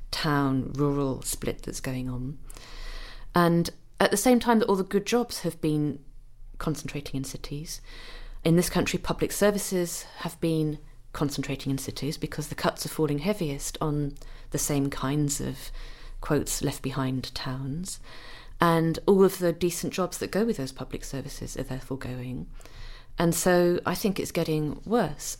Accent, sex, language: British, female, English